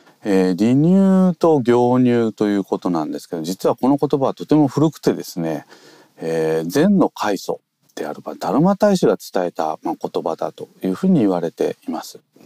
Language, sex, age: Japanese, male, 40-59